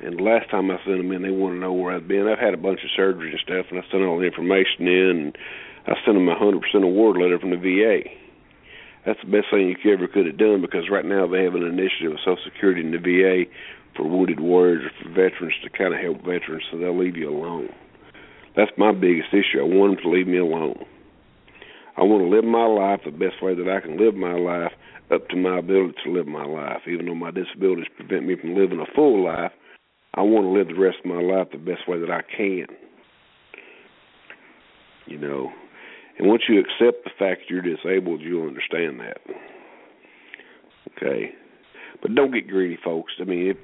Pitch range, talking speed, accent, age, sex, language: 90-95 Hz, 225 wpm, American, 50-69, male, English